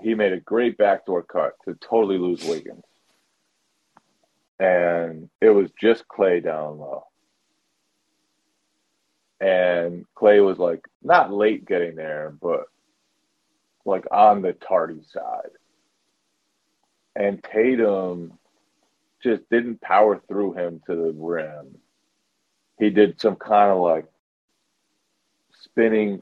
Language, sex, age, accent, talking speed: English, male, 40-59, American, 110 wpm